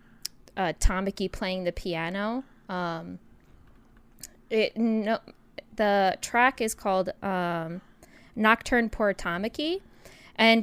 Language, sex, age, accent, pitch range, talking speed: English, female, 10-29, American, 175-215 Hz, 95 wpm